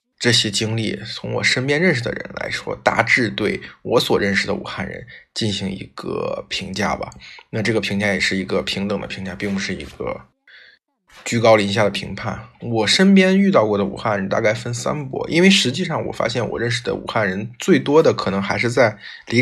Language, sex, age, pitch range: Chinese, male, 20-39, 100-130 Hz